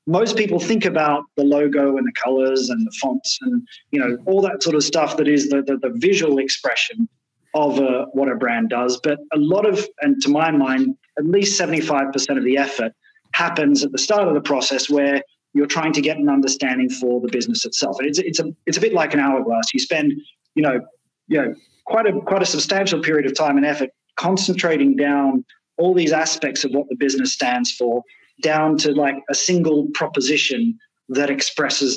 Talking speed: 205 wpm